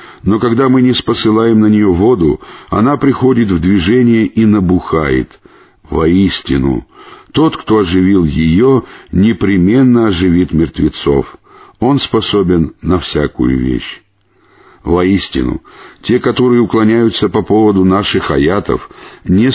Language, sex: Russian, male